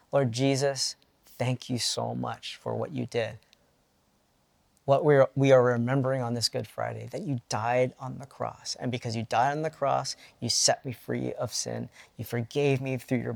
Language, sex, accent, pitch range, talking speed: English, male, American, 115-135 Hz, 195 wpm